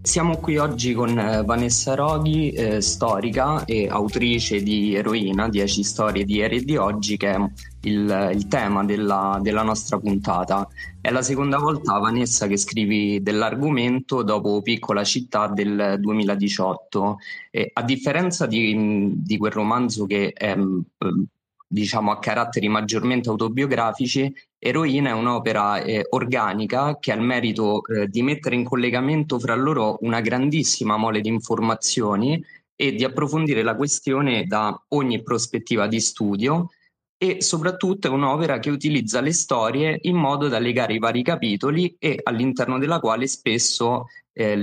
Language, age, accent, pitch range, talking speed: Italian, 20-39, native, 105-130 Hz, 145 wpm